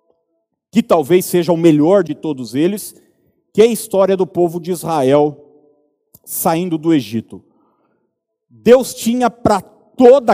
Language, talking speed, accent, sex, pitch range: Portuguese, 135 wpm, Brazilian, male, 145-180 Hz